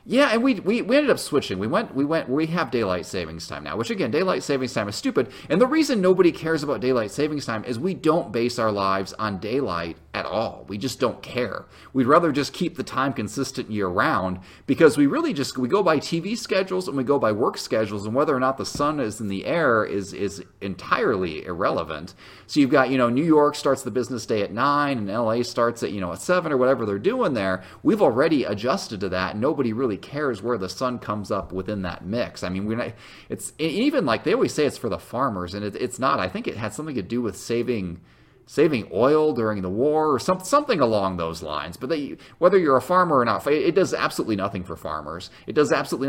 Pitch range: 100-145 Hz